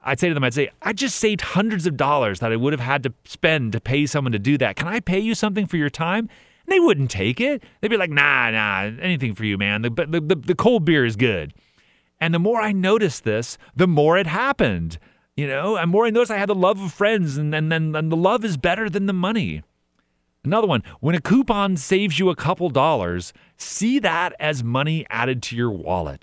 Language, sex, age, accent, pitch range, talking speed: English, male, 30-49, American, 115-190 Hz, 240 wpm